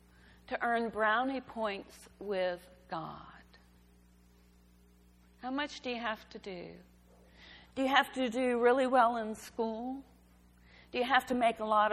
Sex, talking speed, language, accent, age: female, 145 wpm, English, American, 50-69